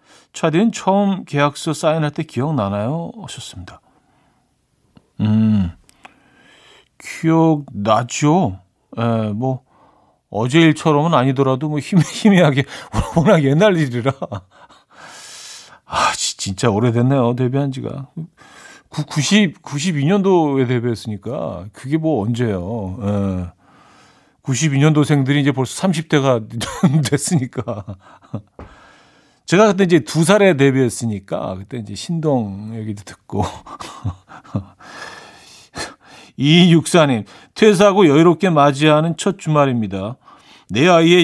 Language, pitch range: Korean, 120-165 Hz